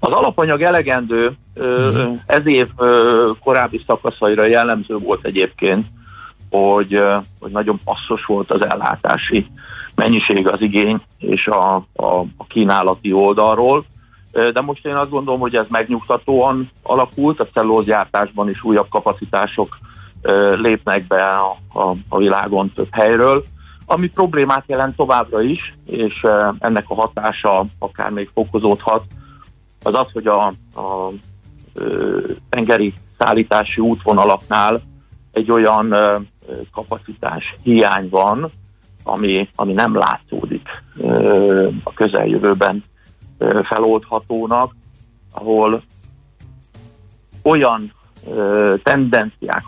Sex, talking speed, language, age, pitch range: male, 95 wpm, Hungarian, 50-69, 100-115 Hz